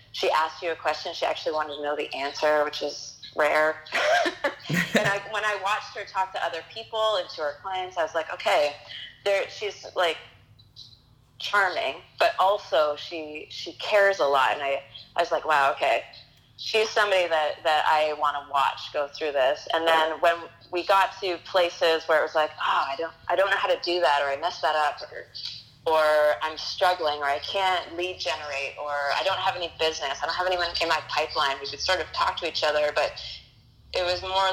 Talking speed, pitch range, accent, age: 210 wpm, 145-180 Hz, American, 30-49